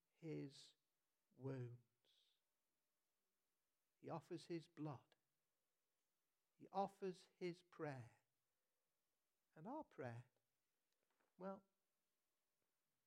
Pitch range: 140-195 Hz